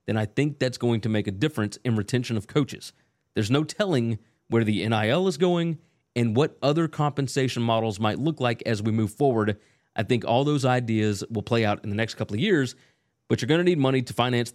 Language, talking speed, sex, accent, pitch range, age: English, 225 wpm, male, American, 115-150 Hz, 30-49